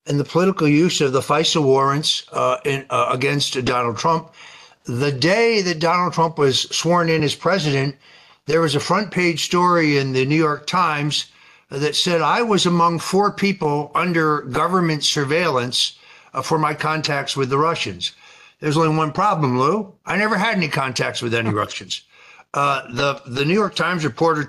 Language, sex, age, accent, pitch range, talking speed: English, male, 60-79, American, 135-165 Hz, 175 wpm